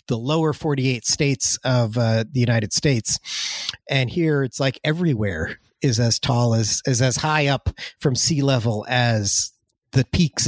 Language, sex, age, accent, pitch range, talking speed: English, male, 40-59, American, 115-145 Hz, 160 wpm